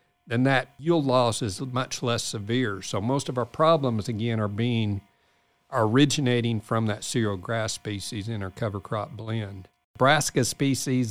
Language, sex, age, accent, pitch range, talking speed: English, male, 50-69, American, 110-130 Hz, 155 wpm